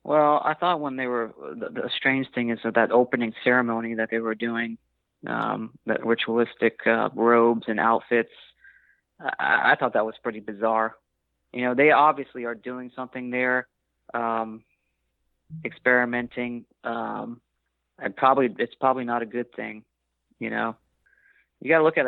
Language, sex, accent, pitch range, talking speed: English, male, American, 115-130 Hz, 160 wpm